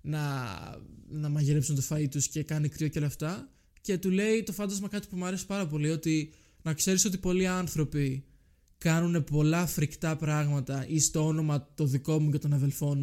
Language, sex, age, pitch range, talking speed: Greek, male, 20-39, 145-170 Hz, 195 wpm